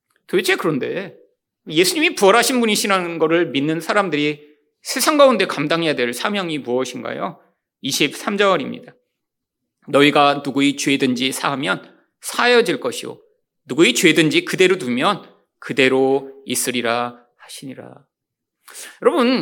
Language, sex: Korean, male